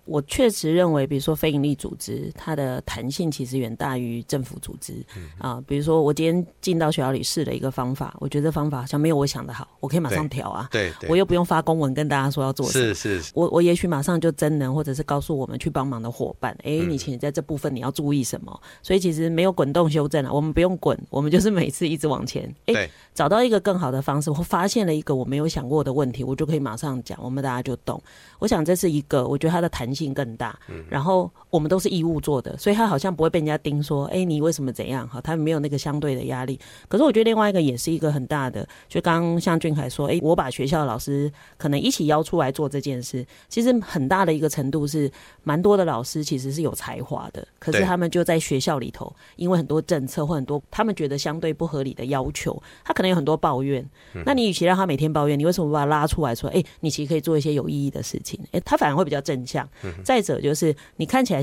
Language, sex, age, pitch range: Chinese, female, 30-49, 135-170 Hz